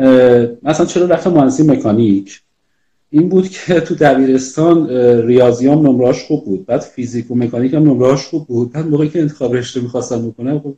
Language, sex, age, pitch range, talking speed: Persian, male, 40-59, 115-145 Hz, 160 wpm